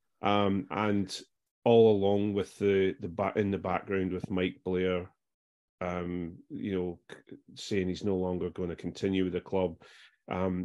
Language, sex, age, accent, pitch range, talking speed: English, male, 30-49, British, 95-105 Hz, 160 wpm